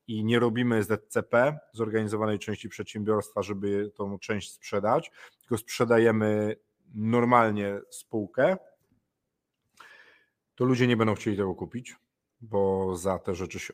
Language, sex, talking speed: Polish, male, 120 wpm